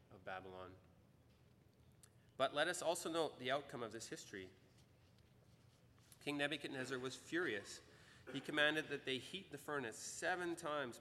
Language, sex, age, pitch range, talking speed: English, male, 30-49, 110-140 Hz, 135 wpm